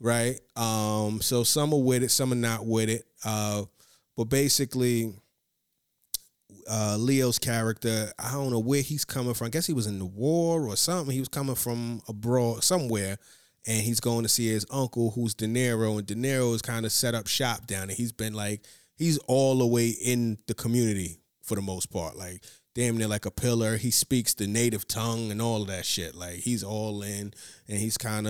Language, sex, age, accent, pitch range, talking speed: English, male, 30-49, American, 105-120 Hz, 210 wpm